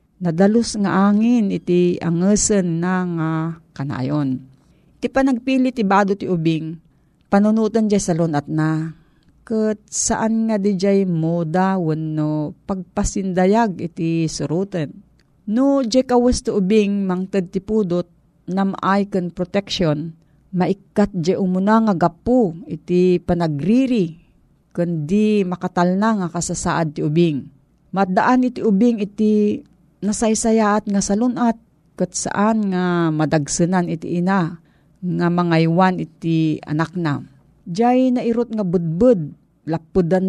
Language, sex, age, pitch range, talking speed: Filipino, female, 40-59, 165-215 Hz, 110 wpm